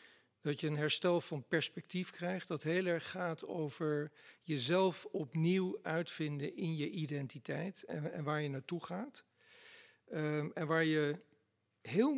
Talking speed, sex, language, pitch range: 140 wpm, male, Dutch, 150-175 Hz